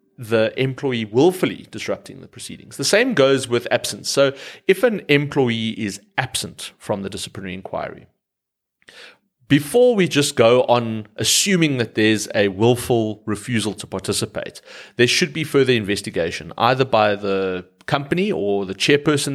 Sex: male